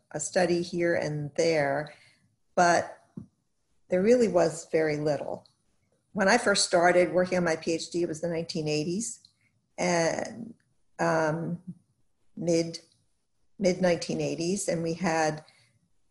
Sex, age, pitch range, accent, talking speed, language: female, 50-69, 160-180 Hz, American, 110 wpm, English